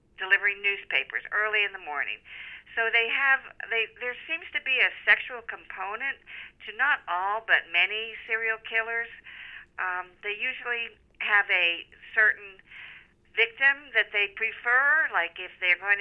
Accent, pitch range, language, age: American, 175-225 Hz, English, 50-69